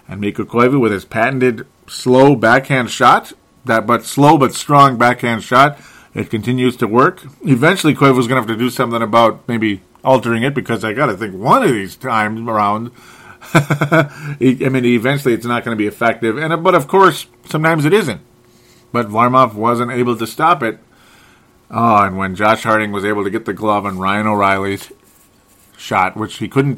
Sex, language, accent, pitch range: male, English, American, 110-135 Hz